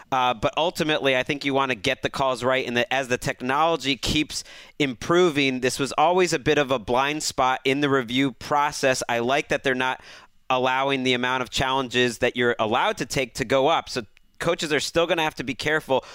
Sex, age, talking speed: male, 30-49, 220 wpm